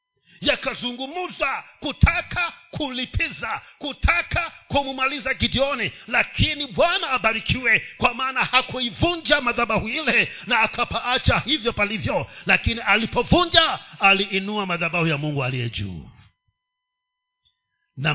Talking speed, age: 90 wpm, 50-69